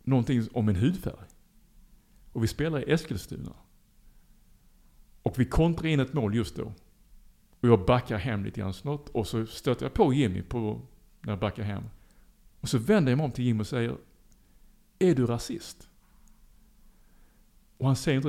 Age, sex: 50-69, male